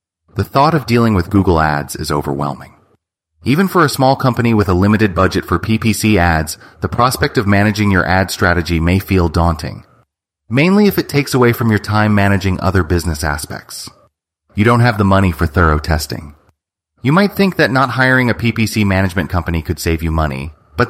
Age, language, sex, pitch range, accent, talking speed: 30-49, English, male, 85-115 Hz, American, 190 wpm